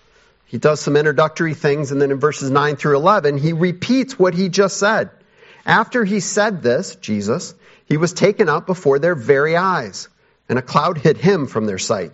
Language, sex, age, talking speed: English, male, 40-59, 195 wpm